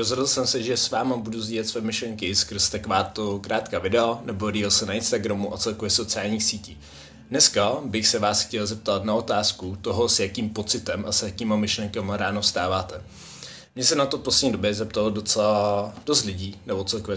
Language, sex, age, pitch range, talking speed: Czech, male, 20-39, 105-115 Hz, 190 wpm